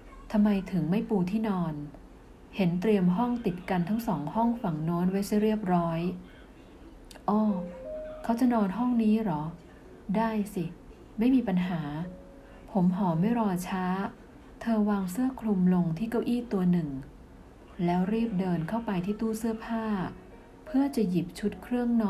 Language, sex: Thai, female